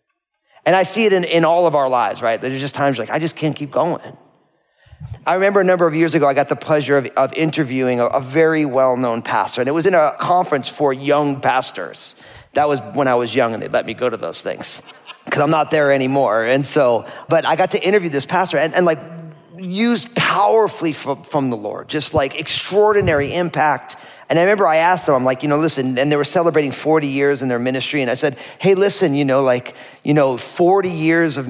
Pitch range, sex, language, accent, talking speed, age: 135-170 Hz, male, English, American, 230 wpm, 40-59